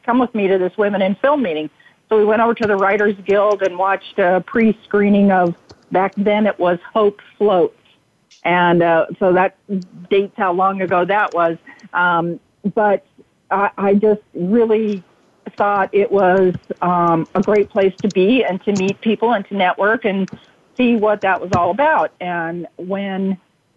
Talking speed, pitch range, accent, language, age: 175 wpm, 170-200 Hz, American, English, 50-69